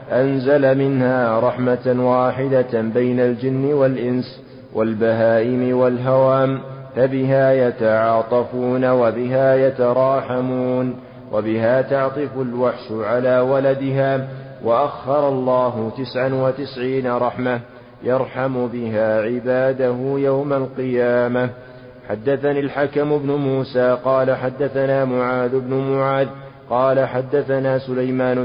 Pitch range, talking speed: 125-135 Hz, 85 wpm